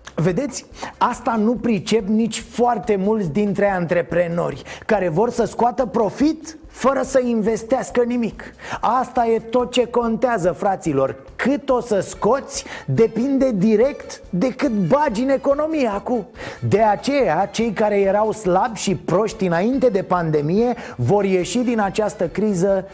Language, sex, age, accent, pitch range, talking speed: Romanian, male, 30-49, native, 180-245 Hz, 135 wpm